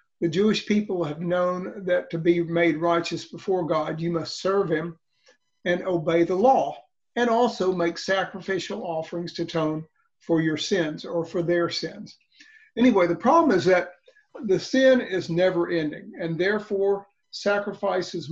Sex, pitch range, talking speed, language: male, 165-205 Hz, 155 wpm, English